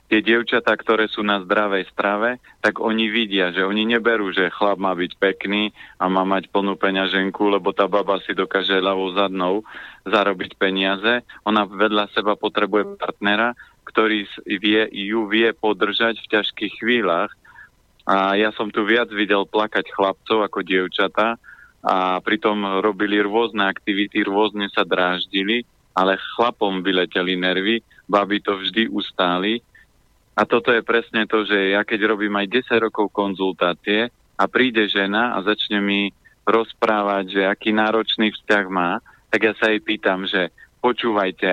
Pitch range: 100-110 Hz